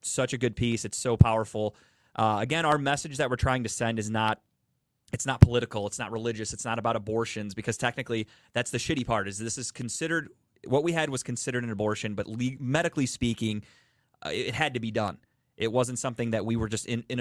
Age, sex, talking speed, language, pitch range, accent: 30-49, male, 215 wpm, English, 110-130 Hz, American